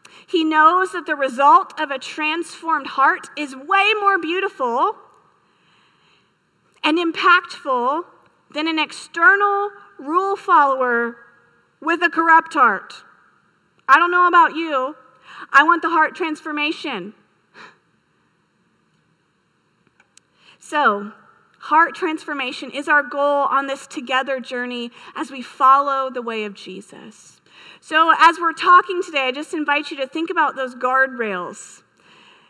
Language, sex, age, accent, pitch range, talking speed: English, female, 40-59, American, 255-330 Hz, 120 wpm